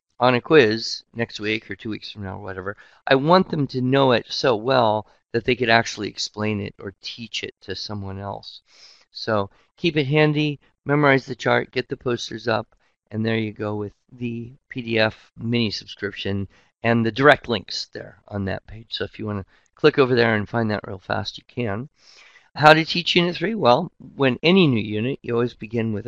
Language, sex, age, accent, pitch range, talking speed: English, male, 50-69, American, 110-135 Hz, 200 wpm